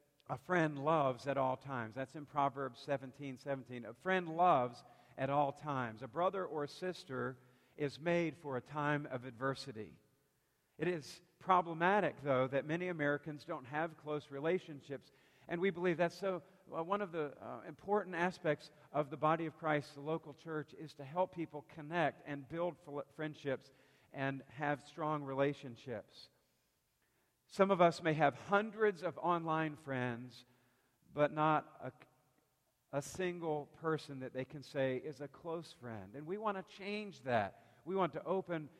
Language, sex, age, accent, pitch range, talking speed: English, male, 50-69, American, 135-165 Hz, 165 wpm